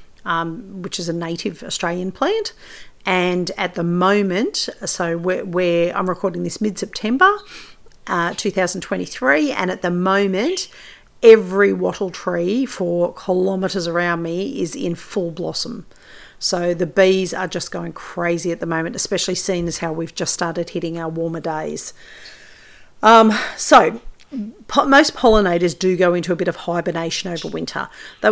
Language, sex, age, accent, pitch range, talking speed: English, female, 40-59, Australian, 175-210 Hz, 145 wpm